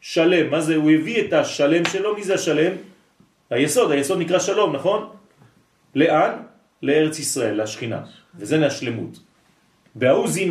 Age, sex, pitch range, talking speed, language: 40-59, male, 145-190 Hz, 130 wpm, French